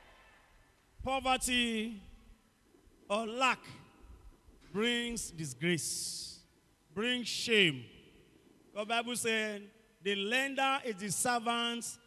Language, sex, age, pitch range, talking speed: English, male, 40-59, 215-285 Hz, 75 wpm